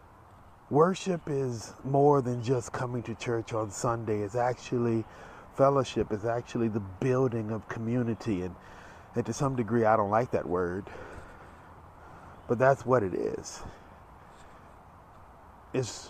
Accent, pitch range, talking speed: American, 90-120 Hz, 125 wpm